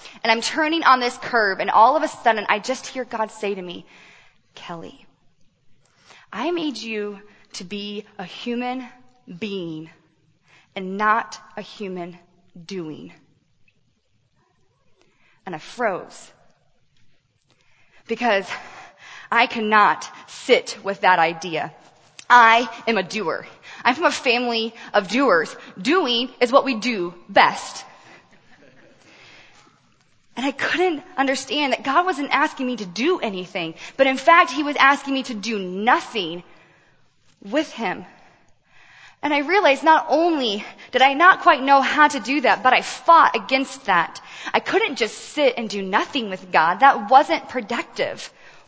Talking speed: 140 wpm